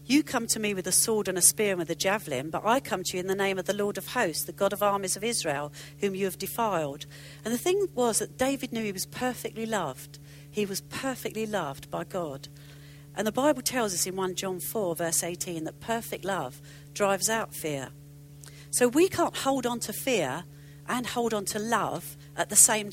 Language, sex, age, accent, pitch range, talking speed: English, female, 50-69, British, 145-230 Hz, 225 wpm